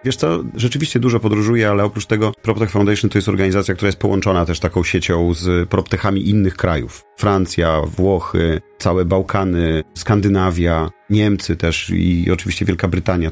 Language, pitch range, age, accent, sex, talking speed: Polish, 90-110 Hz, 40-59, native, male, 155 wpm